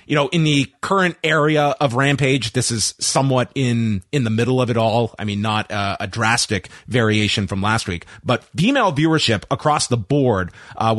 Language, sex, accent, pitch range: English, male, American, 110-150 Hz